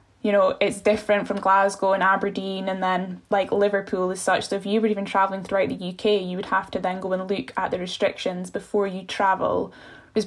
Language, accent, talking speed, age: English, British, 220 wpm, 10-29